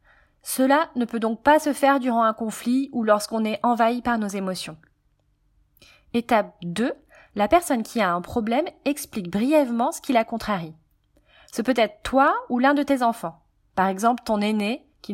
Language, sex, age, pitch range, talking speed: French, female, 20-39, 210-285 Hz, 180 wpm